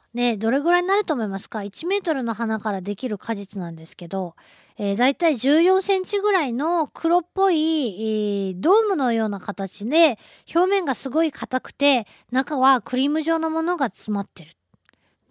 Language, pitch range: Japanese, 210-325 Hz